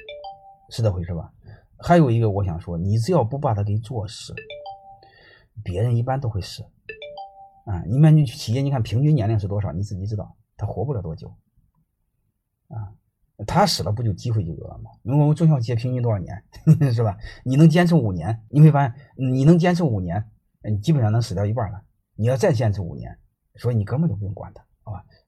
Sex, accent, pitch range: male, native, 100-130 Hz